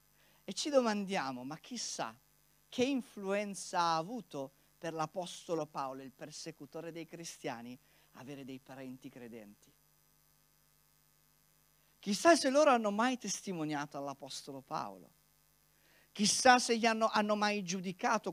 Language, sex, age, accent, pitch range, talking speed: Italian, male, 50-69, native, 140-205 Hz, 115 wpm